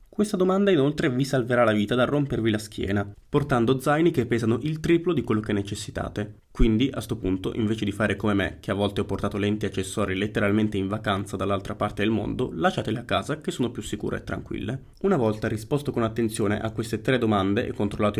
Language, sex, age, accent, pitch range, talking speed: Italian, male, 20-39, native, 105-125 Hz, 215 wpm